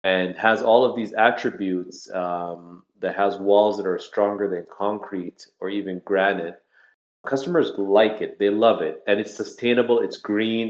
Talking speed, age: 165 wpm, 30-49